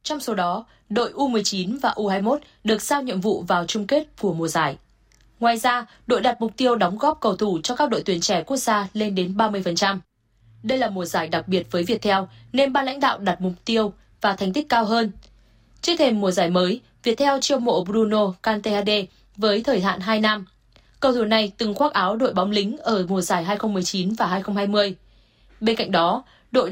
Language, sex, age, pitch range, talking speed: Vietnamese, female, 20-39, 190-245 Hz, 205 wpm